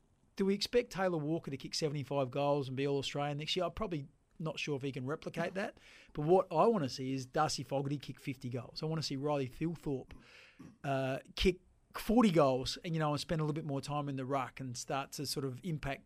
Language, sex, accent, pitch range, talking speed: English, male, Australian, 135-165 Hz, 245 wpm